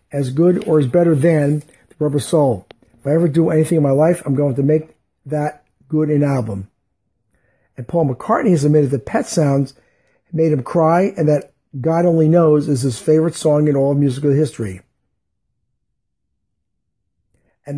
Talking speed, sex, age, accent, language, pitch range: 170 wpm, male, 50-69, American, English, 135-165 Hz